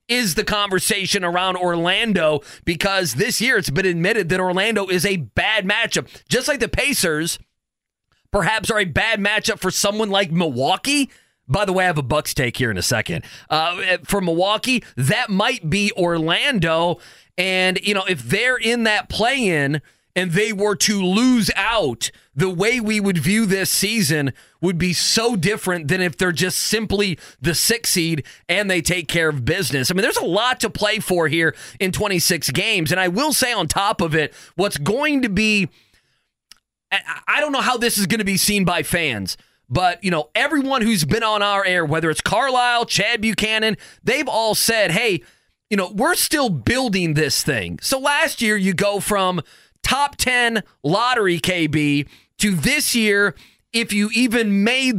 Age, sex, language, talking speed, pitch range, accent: 30-49, male, English, 180 wpm, 175-220 Hz, American